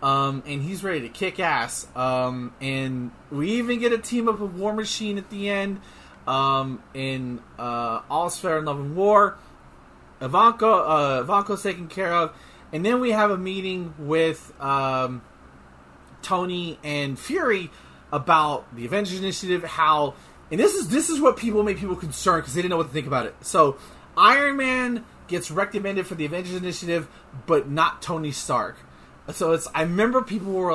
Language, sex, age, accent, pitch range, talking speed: English, male, 30-49, American, 145-205 Hz, 175 wpm